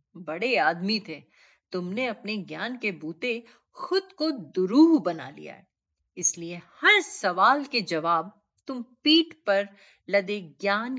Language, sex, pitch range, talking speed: Hindi, female, 165-275 Hz, 130 wpm